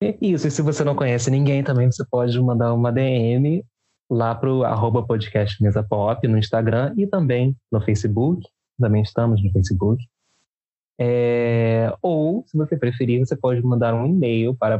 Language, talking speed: Portuguese, 155 wpm